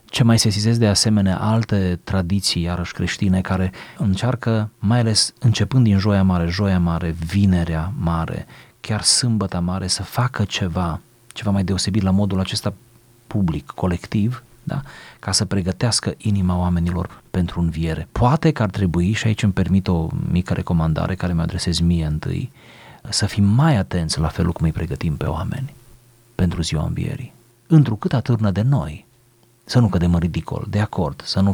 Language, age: Romanian, 30-49